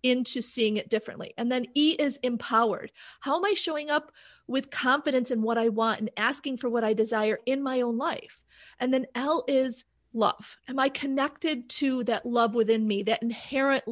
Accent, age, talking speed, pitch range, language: American, 40-59, 195 wpm, 225-275 Hz, English